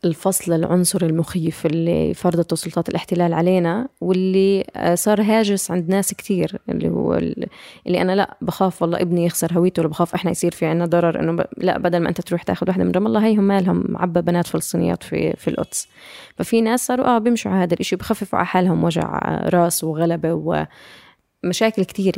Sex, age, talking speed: female, 20-39, 180 wpm